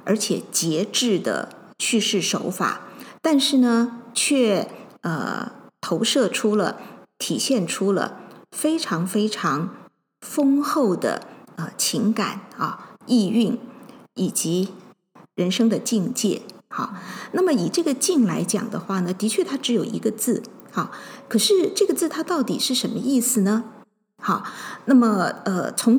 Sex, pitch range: female, 210-255 Hz